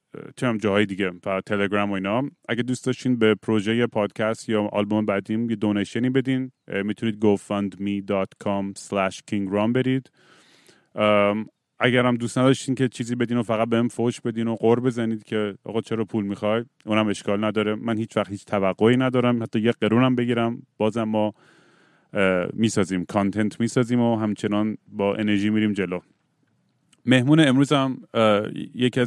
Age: 30-49